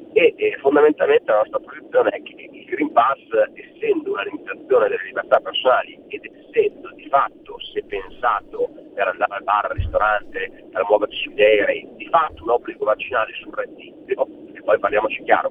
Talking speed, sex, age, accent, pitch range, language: 170 wpm, male, 40-59, native, 320-460 Hz, Italian